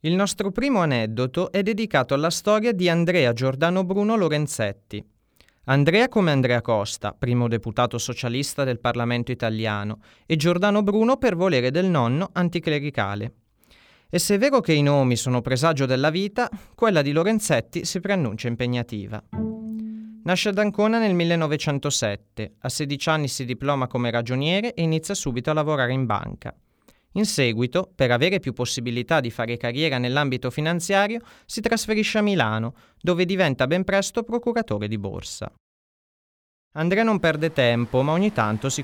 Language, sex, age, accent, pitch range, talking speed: Italian, male, 30-49, native, 120-190 Hz, 150 wpm